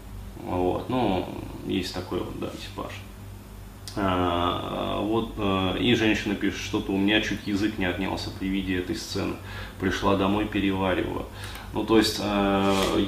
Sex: male